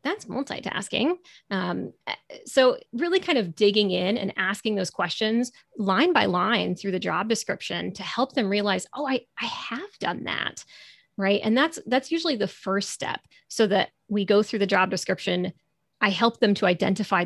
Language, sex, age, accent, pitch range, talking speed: English, female, 30-49, American, 190-235 Hz, 175 wpm